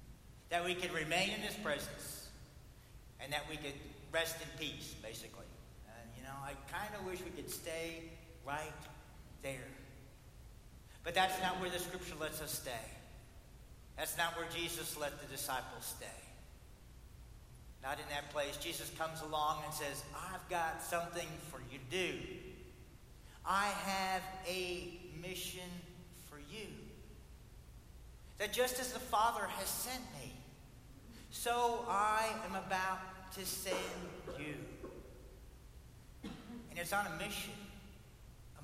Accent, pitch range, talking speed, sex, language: American, 150-195 Hz, 135 wpm, male, English